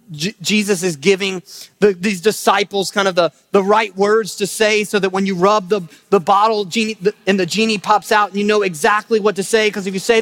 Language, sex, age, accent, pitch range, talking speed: English, male, 30-49, American, 170-210 Hz, 240 wpm